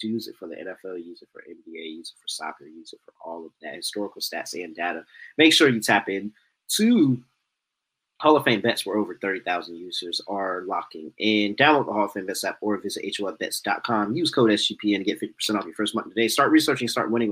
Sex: male